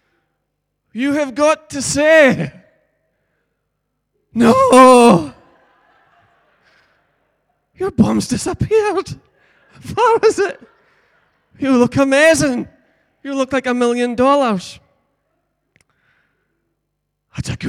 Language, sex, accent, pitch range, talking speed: English, male, American, 160-235 Hz, 80 wpm